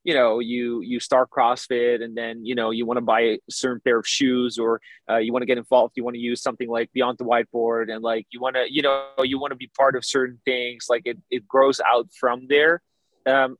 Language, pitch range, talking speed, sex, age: English, 115-135 Hz, 255 wpm, male, 20-39